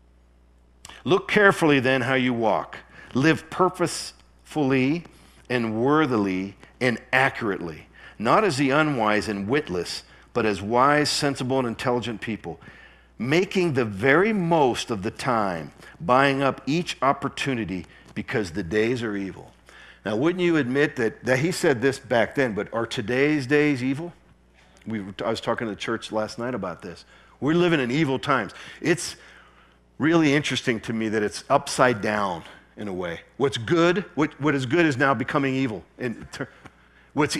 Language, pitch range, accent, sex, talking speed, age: English, 110-150 Hz, American, male, 155 wpm, 50-69